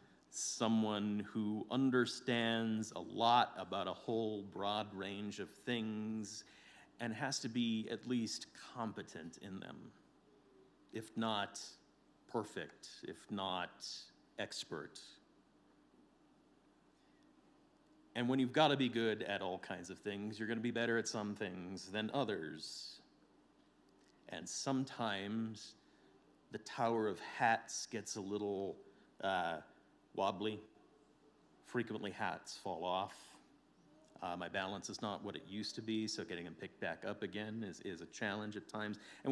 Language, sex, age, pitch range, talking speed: English, male, 40-59, 100-130 Hz, 135 wpm